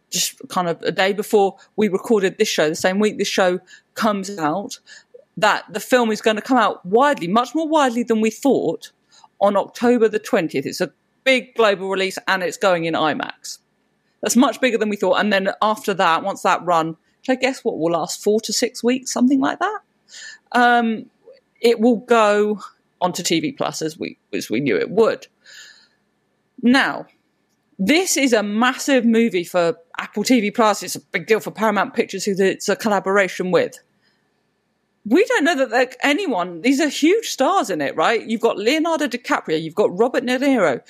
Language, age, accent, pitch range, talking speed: English, 40-59, British, 195-255 Hz, 190 wpm